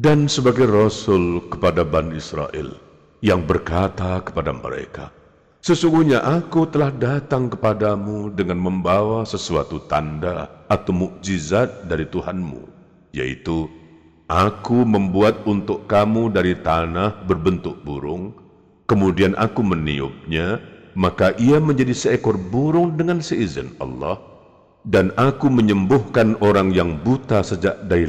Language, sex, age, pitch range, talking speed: Indonesian, male, 50-69, 85-115 Hz, 110 wpm